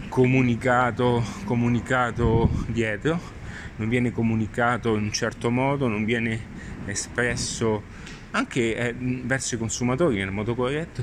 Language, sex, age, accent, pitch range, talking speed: Italian, male, 30-49, native, 110-135 Hz, 110 wpm